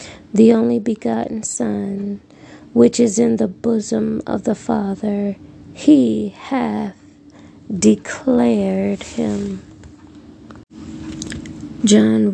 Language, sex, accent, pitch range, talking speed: English, female, American, 195-230 Hz, 85 wpm